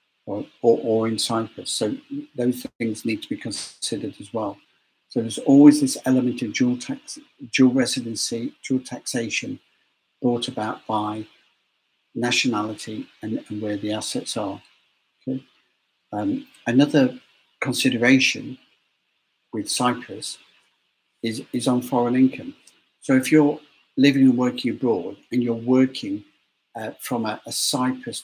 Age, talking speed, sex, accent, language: 60-79, 130 wpm, male, British, English